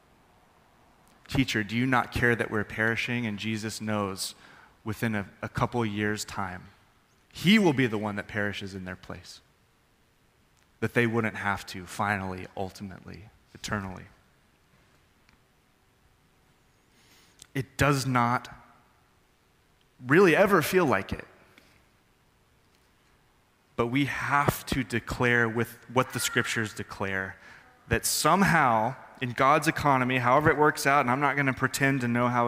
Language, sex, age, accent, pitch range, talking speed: English, male, 20-39, American, 105-130 Hz, 130 wpm